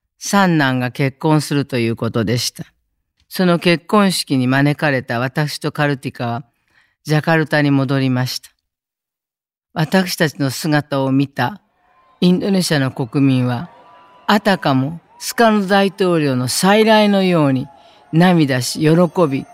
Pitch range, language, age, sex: 135-175 Hz, Japanese, 40-59, female